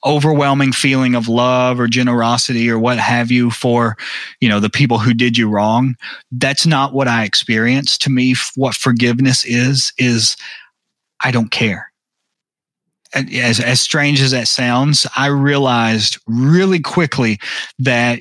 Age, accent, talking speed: 30-49, American, 150 wpm